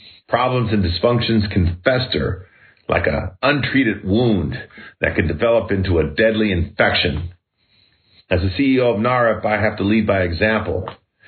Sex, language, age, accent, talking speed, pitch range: male, English, 50-69, American, 145 wpm, 95-130 Hz